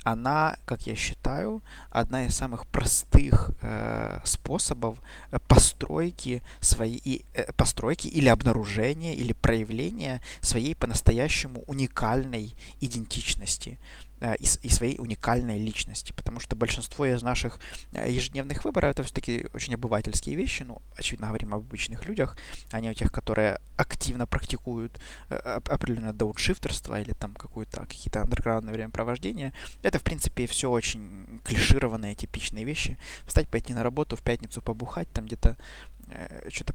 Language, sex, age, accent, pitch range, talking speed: Ukrainian, male, 20-39, native, 110-130 Hz, 125 wpm